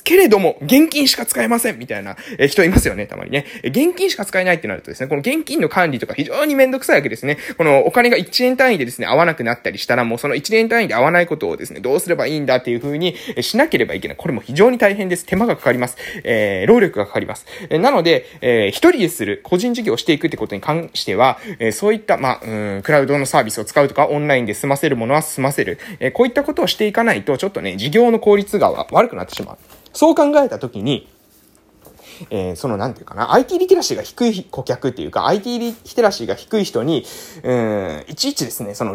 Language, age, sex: Japanese, 20-39, male